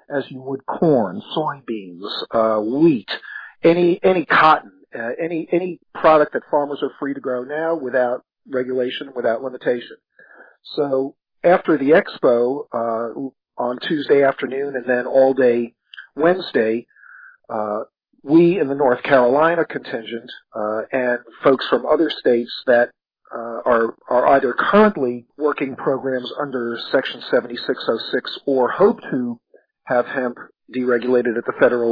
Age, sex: 50-69, male